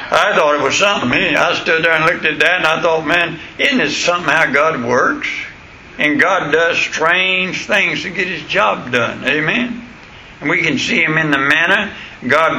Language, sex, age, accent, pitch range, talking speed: English, male, 60-79, American, 160-180 Hz, 210 wpm